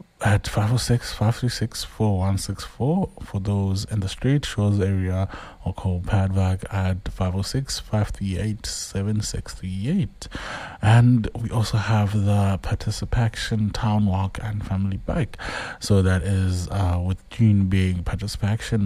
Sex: male